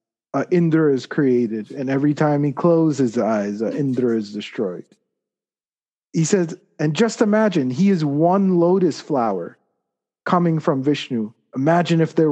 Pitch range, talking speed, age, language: 130-175 Hz, 150 wpm, 40-59, English